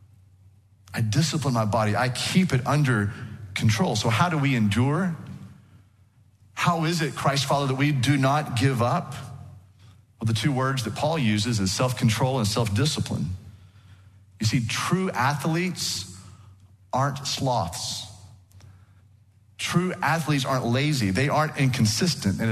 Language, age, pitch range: English, 40-59, 105-145 Hz